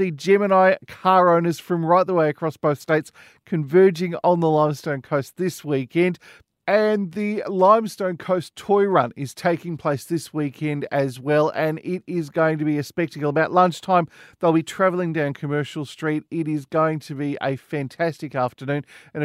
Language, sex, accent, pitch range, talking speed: English, male, Australian, 145-180 Hz, 175 wpm